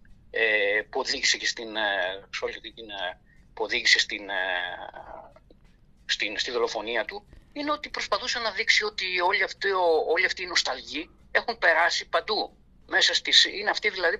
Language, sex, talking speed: Greek, male, 95 wpm